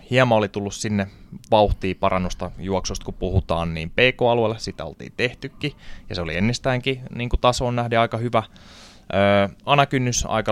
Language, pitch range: Finnish, 90-110 Hz